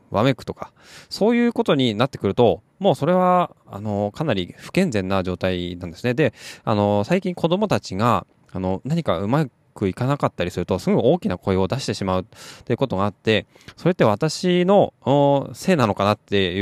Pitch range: 95-140 Hz